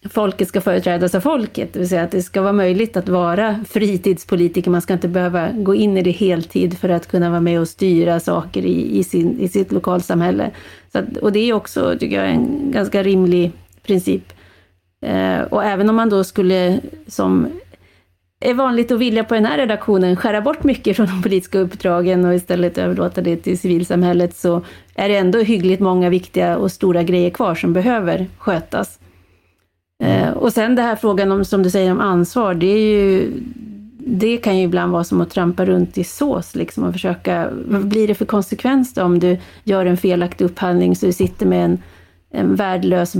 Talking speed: 195 wpm